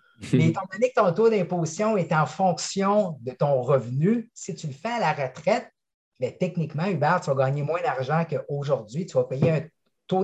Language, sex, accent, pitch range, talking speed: French, male, Canadian, 140-180 Hz, 200 wpm